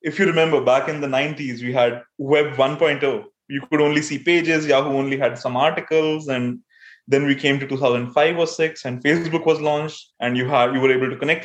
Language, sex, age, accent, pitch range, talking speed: English, male, 20-39, Indian, 135-165 Hz, 215 wpm